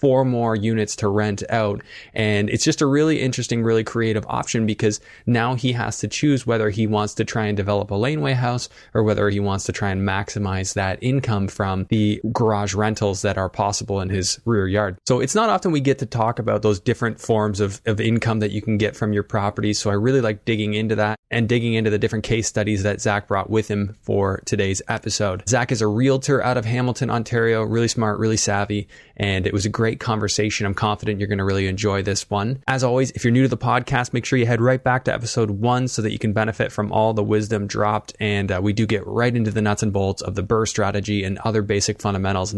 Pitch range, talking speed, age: 105-120 Hz, 240 wpm, 20-39